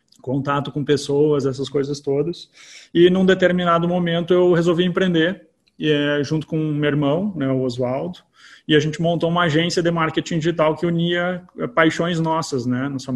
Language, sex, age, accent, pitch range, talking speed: Portuguese, male, 20-39, Brazilian, 135-165 Hz, 165 wpm